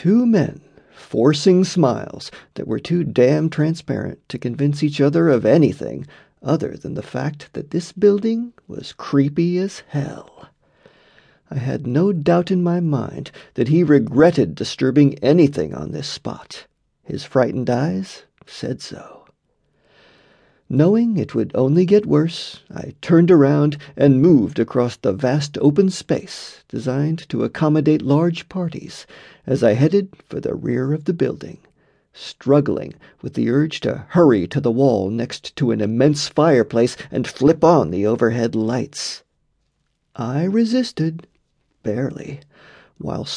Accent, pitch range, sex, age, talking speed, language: American, 130-170 Hz, male, 40-59, 140 wpm, English